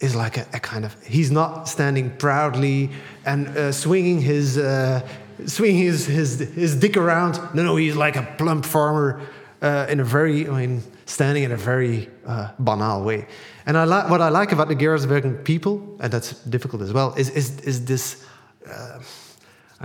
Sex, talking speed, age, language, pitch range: male, 185 wpm, 30-49, English, 130-155 Hz